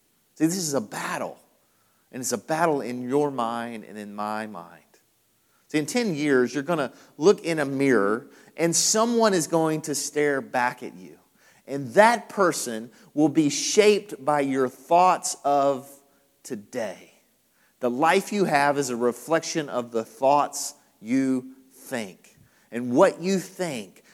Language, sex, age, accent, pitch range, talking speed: English, male, 40-59, American, 125-165 Hz, 155 wpm